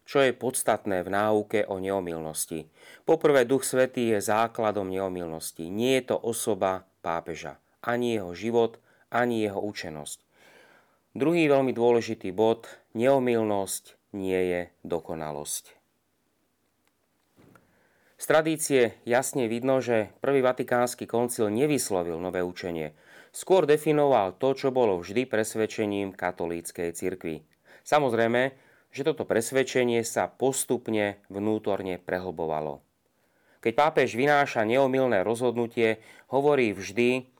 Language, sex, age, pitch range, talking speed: Slovak, male, 30-49, 95-125 Hz, 105 wpm